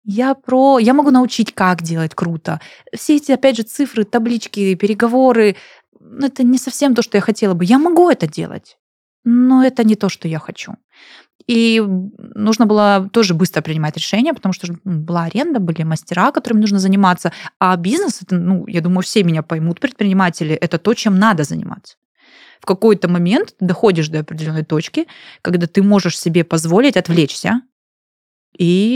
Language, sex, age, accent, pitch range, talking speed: Russian, female, 20-39, native, 175-220 Hz, 165 wpm